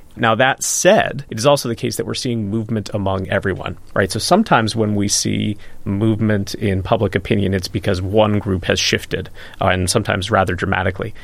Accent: American